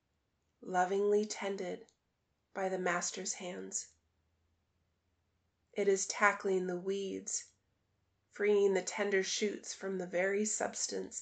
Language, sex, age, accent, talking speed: English, female, 30-49, American, 100 wpm